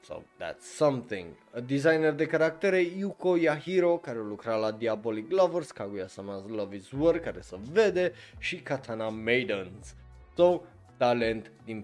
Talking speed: 130 wpm